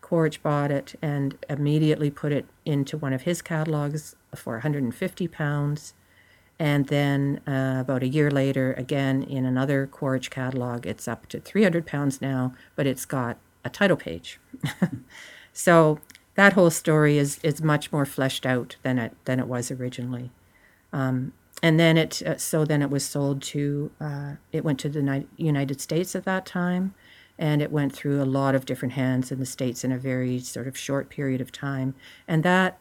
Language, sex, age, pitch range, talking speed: English, female, 50-69, 125-145 Hz, 185 wpm